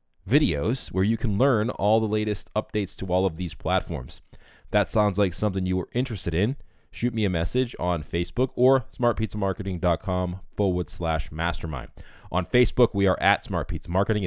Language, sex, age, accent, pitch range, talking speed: English, male, 20-39, American, 90-120 Hz, 170 wpm